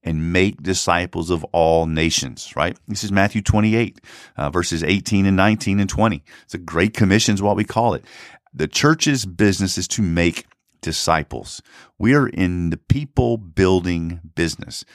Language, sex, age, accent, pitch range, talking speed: English, male, 50-69, American, 85-115 Hz, 165 wpm